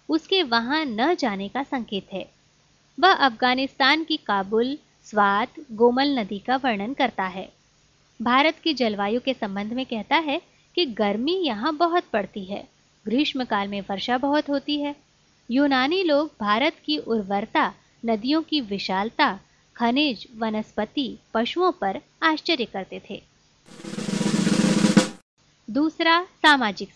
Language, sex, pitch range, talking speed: Hindi, female, 215-300 Hz, 120 wpm